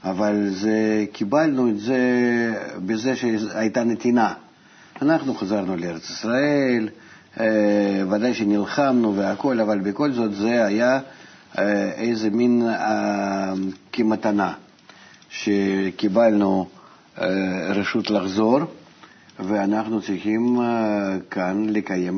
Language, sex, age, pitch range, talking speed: Hebrew, male, 50-69, 95-110 Hz, 95 wpm